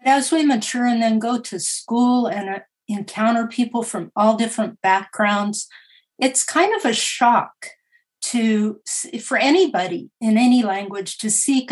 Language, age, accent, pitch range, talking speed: English, 50-69, American, 205-235 Hz, 145 wpm